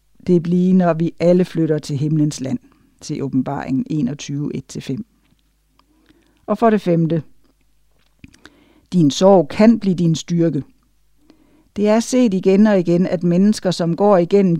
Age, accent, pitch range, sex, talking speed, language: 60-79, native, 165-210 Hz, female, 140 wpm, Danish